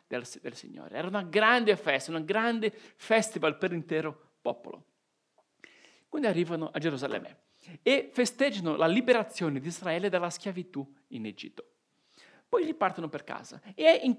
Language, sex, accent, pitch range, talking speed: Italian, male, native, 170-235 Hz, 140 wpm